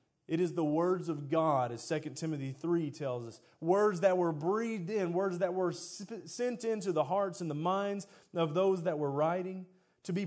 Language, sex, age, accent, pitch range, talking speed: English, male, 30-49, American, 130-185 Hz, 200 wpm